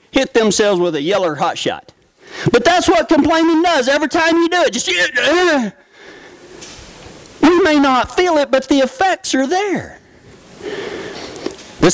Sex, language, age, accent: male, English, 40-59, American